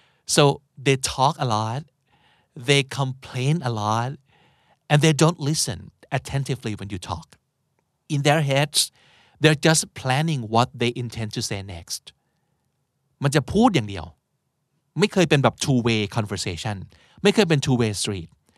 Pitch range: 115-155 Hz